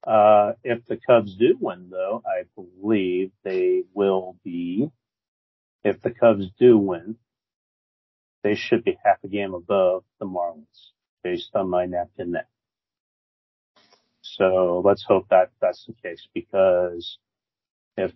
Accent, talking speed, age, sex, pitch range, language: American, 130 wpm, 40-59, male, 90-120 Hz, English